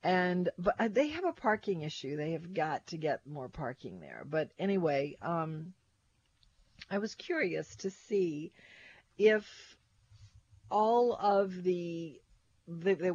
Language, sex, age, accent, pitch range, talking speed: English, female, 50-69, American, 150-185 Hz, 130 wpm